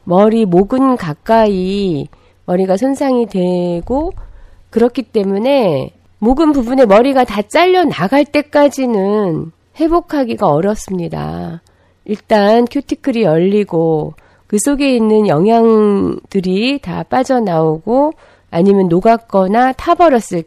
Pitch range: 180-255 Hz